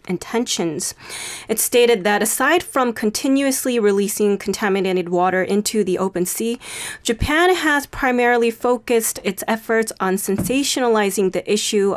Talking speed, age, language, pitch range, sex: 120 wpm, 30-49, English, 195-250 Hz, female